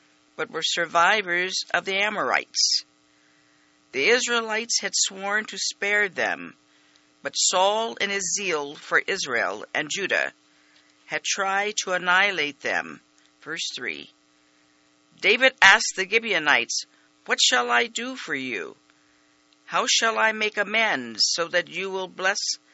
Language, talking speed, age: English, 130 wpm, 50-69